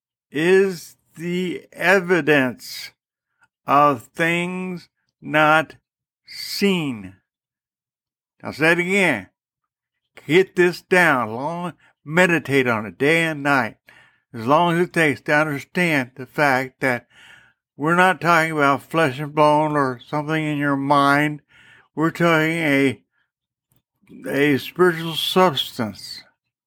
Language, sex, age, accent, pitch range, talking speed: English, male, 60-79, American, 135-170 Hz, 110 wpm